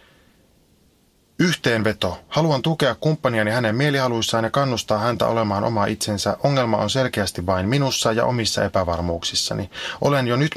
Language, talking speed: Finnish, 130 wpm